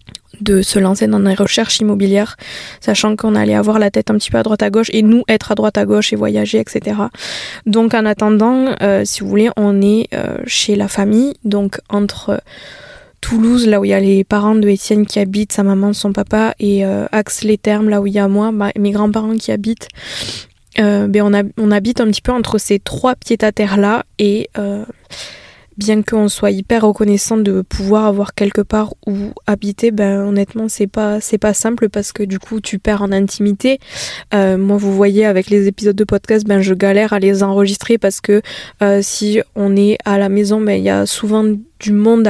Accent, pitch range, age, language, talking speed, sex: French, 200-215 Hz, 20-39, French, 215 wpm, female